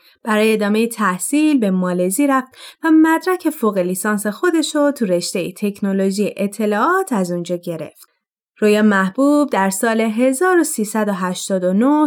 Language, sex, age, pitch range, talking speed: Persian, female, 30-49, 195-270 Hz, 120 wpm